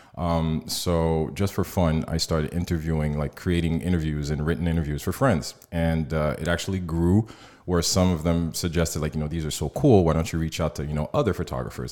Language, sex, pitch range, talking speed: English, male, 75-85 Hz, 215 wpm